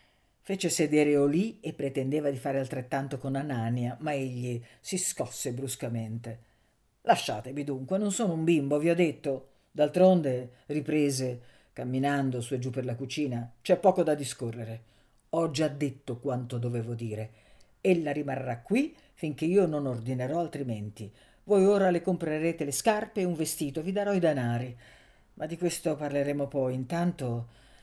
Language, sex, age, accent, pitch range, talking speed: Italian, female, 50-69, native, 125-180 Hz, 150 wpm